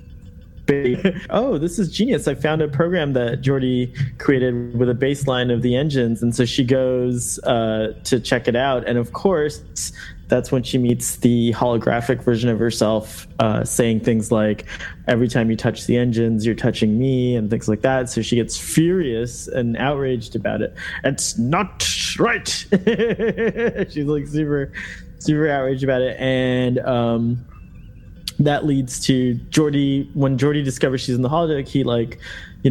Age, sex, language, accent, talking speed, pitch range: 20-39, male, English, American, 165 wpm, 115-135 Hz